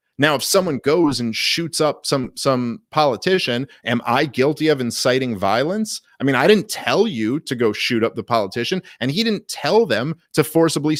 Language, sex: English, male